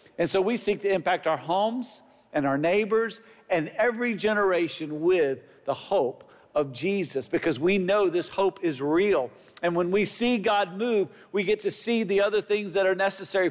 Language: English